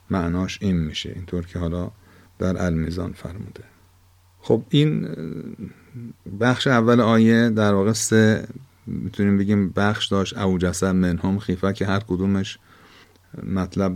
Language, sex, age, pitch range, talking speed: Persian, male, 50-69, 90-105 Hz, 120 wpm